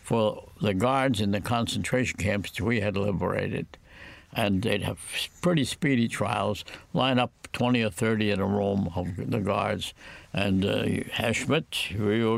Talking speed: 155 wpm